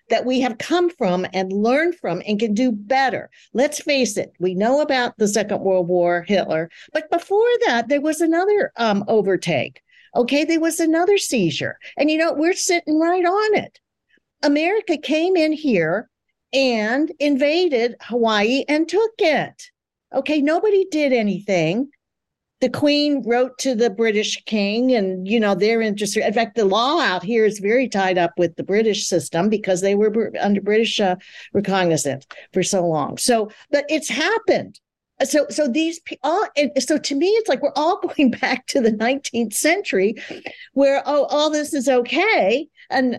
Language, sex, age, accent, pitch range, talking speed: English, female, 50-69, American, 210-300 Hz, 170 wpm